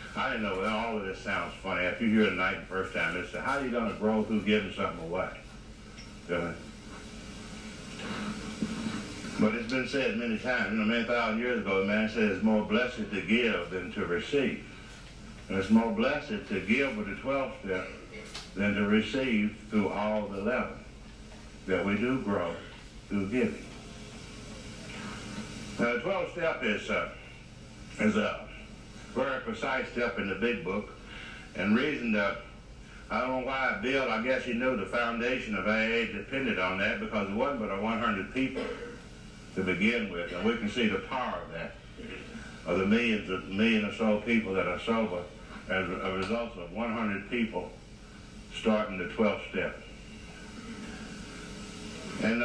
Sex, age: male, 60-79